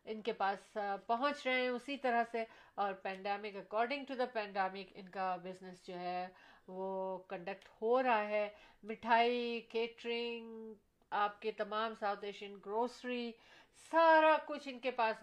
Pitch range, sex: 195-235 Hz, female